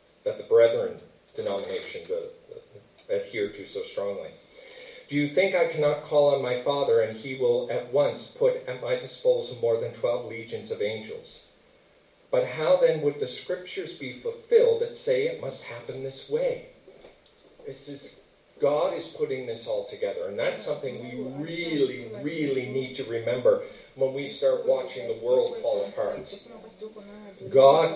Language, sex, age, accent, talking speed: English, male, 40-59, American, 160 wpm